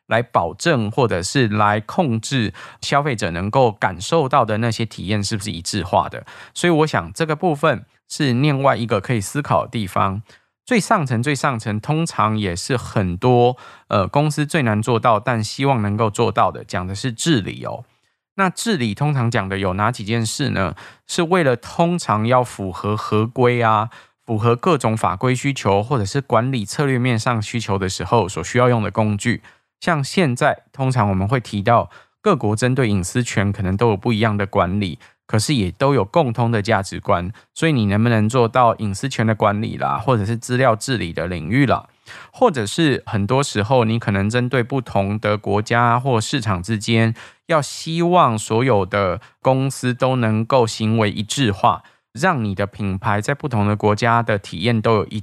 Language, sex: Chinese, male